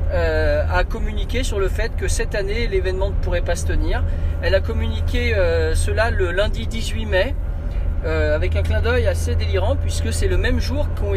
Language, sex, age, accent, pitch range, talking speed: French, male, 40-59, French, 80-85 Hz, 200 wpm